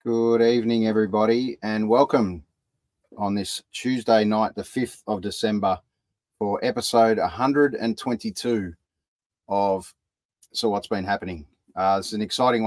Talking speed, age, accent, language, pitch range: 120 wpm, 30-49, Australian, English, 95-110 Hz